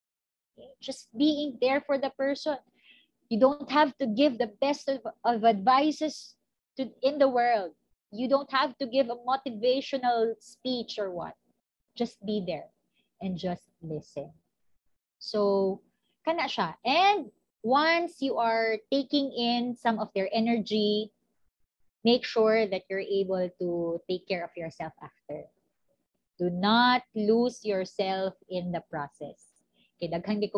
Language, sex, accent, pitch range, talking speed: Filipino, female, native, 190-270 Hz, 130 wpm